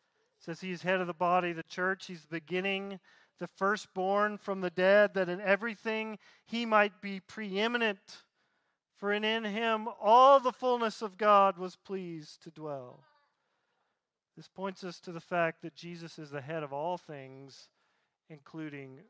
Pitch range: 165-225 Hz